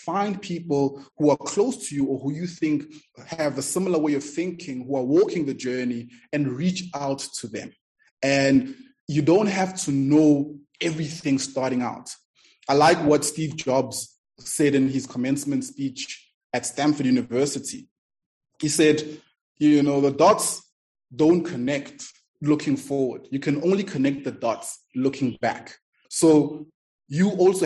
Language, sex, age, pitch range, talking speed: English, male, 20-39, 135-170 Hz, 150 wpm